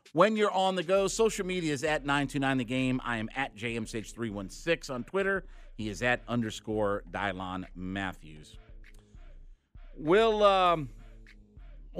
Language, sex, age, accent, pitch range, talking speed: English, male, 50-69, American, 110-150 Hz, 130 wpm